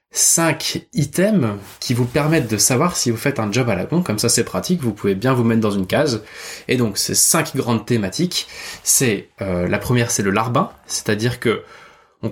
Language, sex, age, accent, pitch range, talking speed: French, male, 20-39, French, 105-135 Hz, 210 wpm